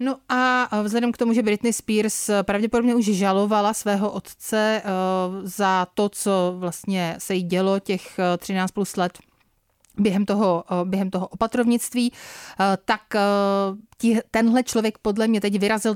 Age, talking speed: 30-49, 130 wpm